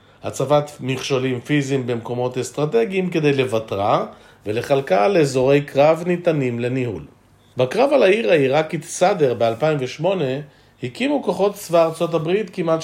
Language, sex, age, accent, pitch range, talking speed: Hebrew, male, 40-59, native, 125-170 Hz, 110 wpm